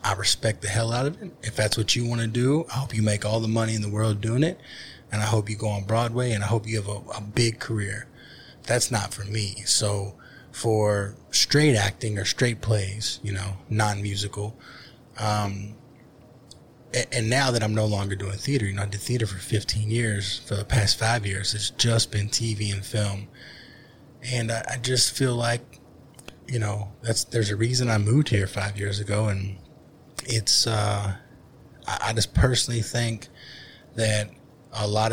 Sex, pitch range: male, 105-120 Hz